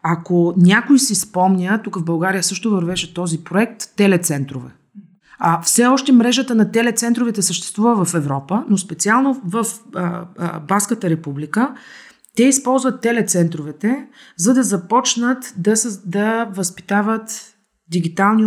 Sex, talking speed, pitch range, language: female, 115 wpm, 175-230 Hz, Bulgarian